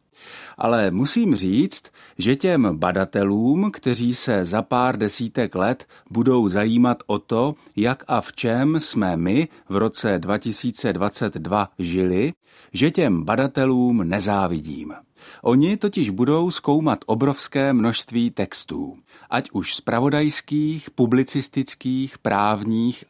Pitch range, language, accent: 105-140 Hz, Czech, native